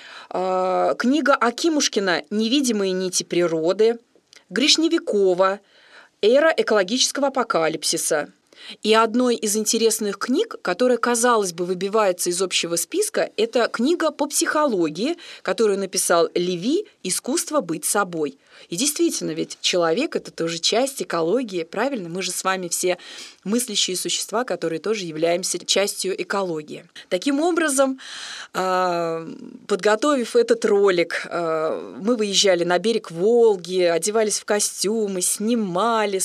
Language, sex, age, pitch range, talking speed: Russian, female, 20-39, 180-235 Hz, 110 wpm